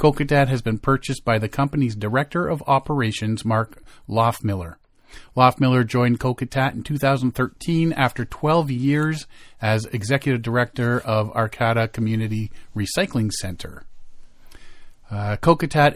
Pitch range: 115-145 Hz